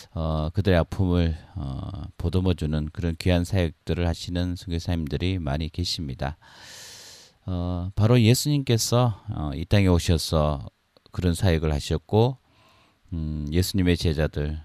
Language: Korean